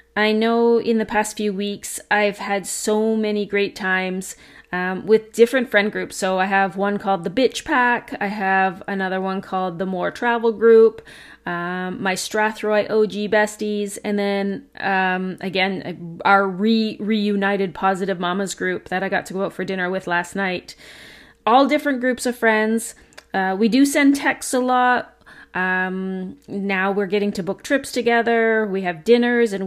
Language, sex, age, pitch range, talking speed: English, female, 30-49, 190-230 Hz, 170 wpm